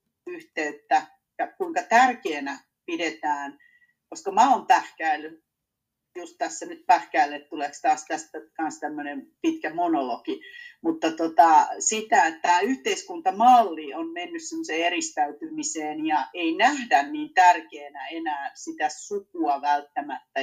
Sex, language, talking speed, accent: female, Finnish, 110 wpm, native